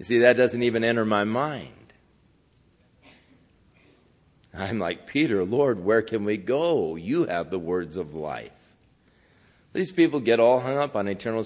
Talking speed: 155 wpm